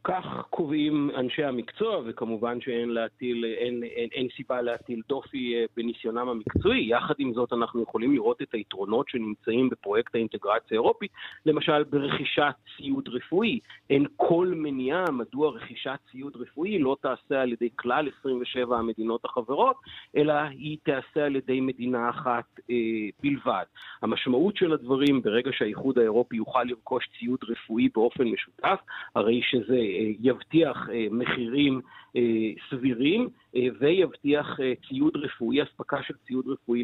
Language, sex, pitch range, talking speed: Hebrew, male, 120-155 Hz, 125 wpm